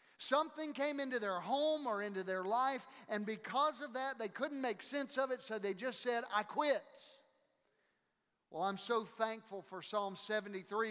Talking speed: 175 wpm